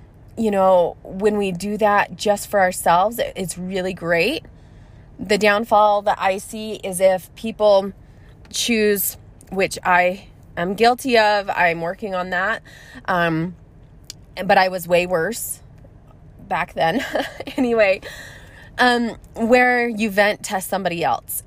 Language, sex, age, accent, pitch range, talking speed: English, female, 20-39, American, 175-220 Hz, 130 wpm